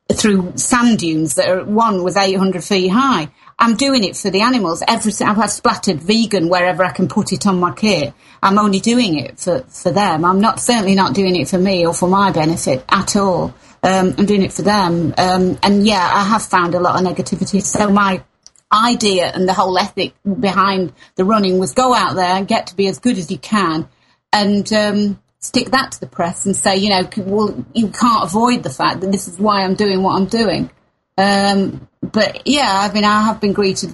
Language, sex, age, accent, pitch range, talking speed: English, female, 40-59, British, 180-200 Hz, 220 wpm